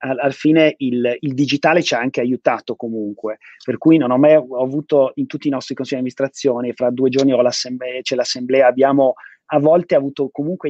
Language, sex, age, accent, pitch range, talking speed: Italian, male, 30-49, native, 120-145 Hz, 195 wpm